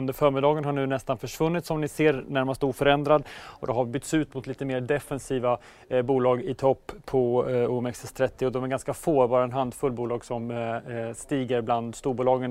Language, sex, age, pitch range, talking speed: English, male, 30-49, 125-145 Hz, 205 wpm